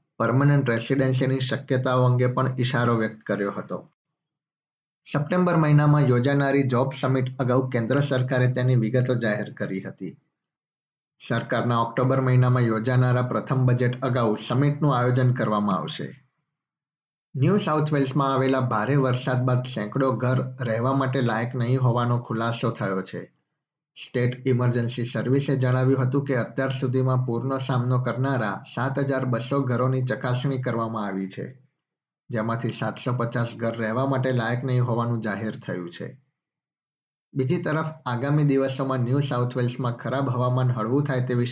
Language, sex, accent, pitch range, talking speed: Gujarati, male, native, 120-135 Hz, 80 wpm